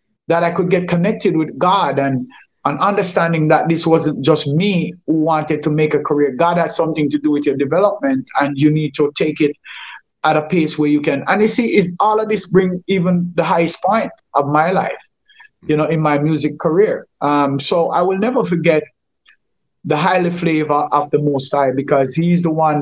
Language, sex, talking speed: English, male, 210 wpm